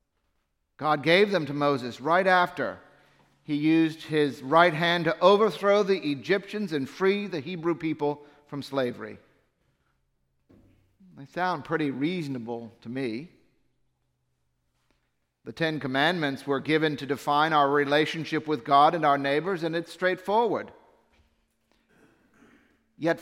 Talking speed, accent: 120 wpm, American